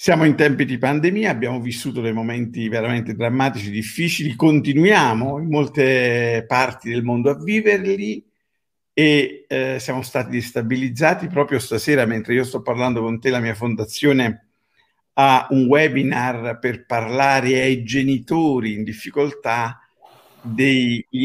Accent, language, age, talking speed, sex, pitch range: native, Italian, 50-69, 130 wpm, male, 120-170 Hz